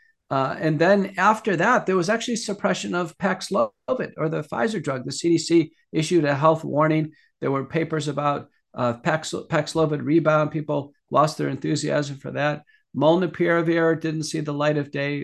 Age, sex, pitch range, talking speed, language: 50-69, male, 140-165 Hz, 165 wpm, English